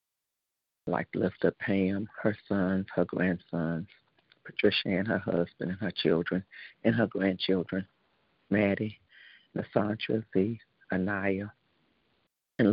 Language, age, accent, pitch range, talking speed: English, 50-69, American, 95-115 Hz, 110 wpm